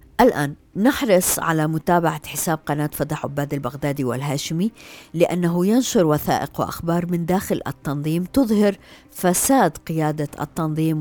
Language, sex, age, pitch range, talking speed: Arabic, female, 50-69, 150-185 Hz, 115 wpm